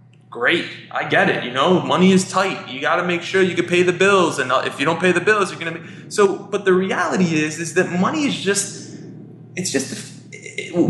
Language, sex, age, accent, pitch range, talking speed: English, male, 20-39, American, 135-185 Hz, 230 wpm